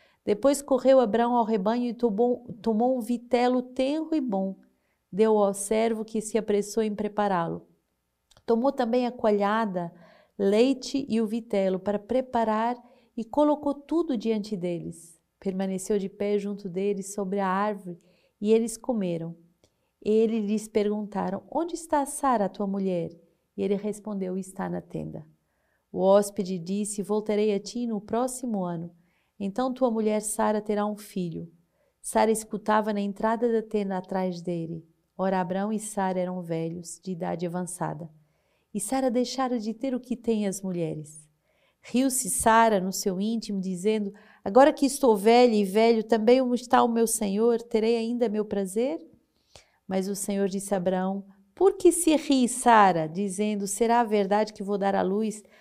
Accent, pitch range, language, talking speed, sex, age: Brazilian, 190-235 Hz, Portuguese, 155 wpm, female, 40-59